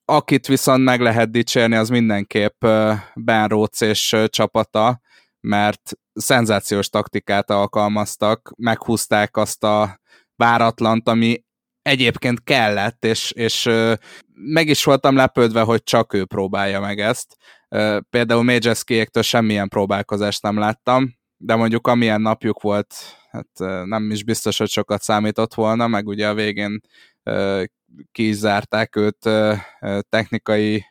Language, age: Hungarian, 20-39